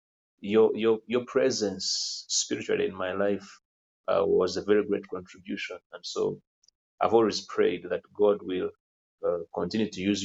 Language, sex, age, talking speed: English, male, 30-49, 150 wpm